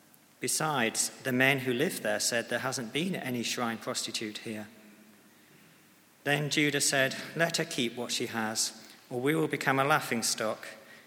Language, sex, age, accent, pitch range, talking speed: English, male, 40-59, British, 110-135 Hz, 155 wpm